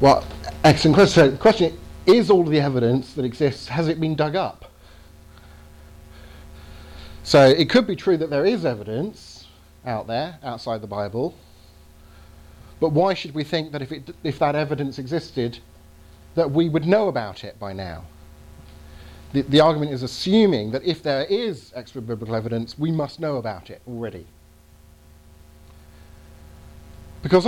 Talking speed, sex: 150 wpm, male